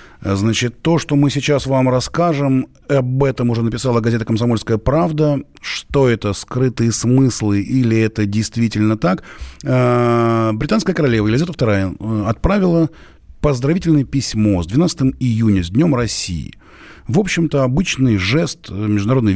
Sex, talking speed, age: male, 125 wpm, 30-49